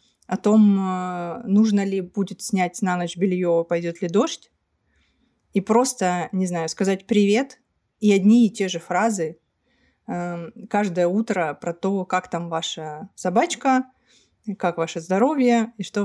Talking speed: 140 wpm